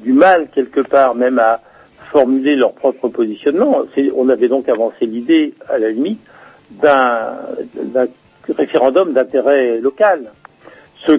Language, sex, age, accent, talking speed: French, male, 60-79, French, 125 wpm